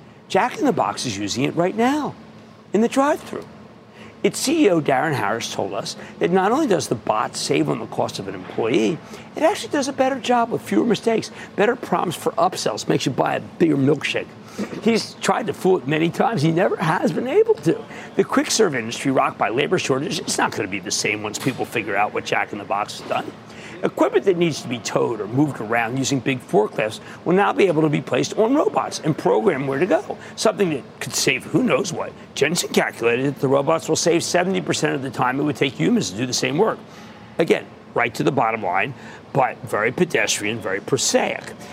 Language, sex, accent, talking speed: English, male, American, 210 wpm